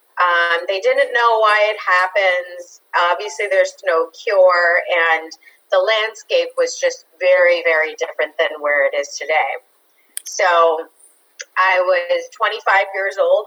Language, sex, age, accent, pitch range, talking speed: English, female, 30-49, American, 165-275 Hz, 135 wpm